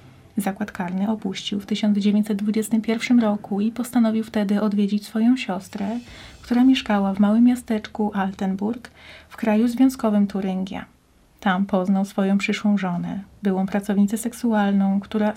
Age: 30-49